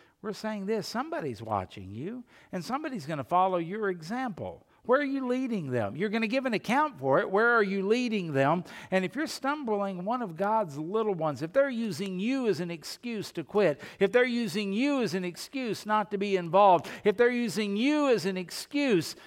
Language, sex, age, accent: English, male, 60-79, American